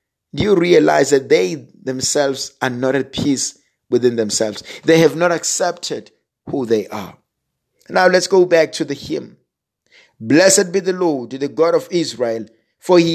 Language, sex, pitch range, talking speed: English, male, 145-185 Hz, 165 wpm